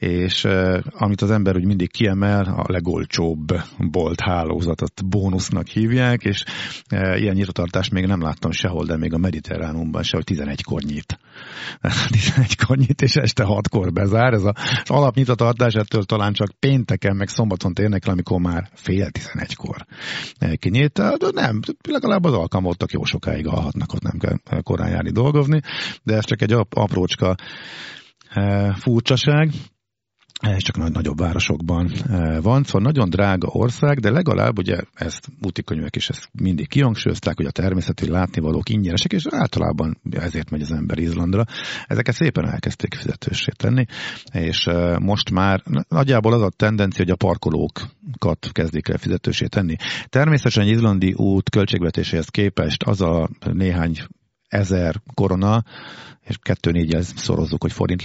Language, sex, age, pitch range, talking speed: Hungarian, male, 50-69, 90-115 Hz, 145 wpm